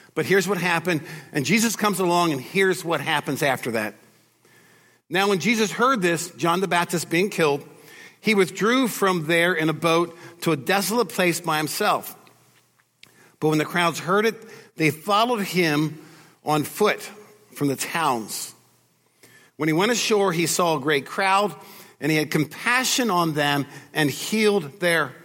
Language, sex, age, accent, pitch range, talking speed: English, male, 50-69, American, 155-205 Hz, 165 wpm